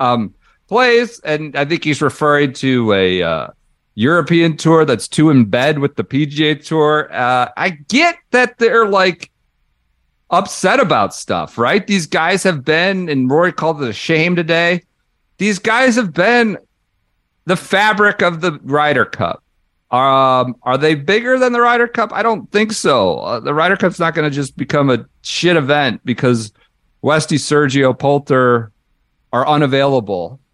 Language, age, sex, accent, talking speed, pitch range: English, 50-69, male, American, 160 wpm, 125-180 Hz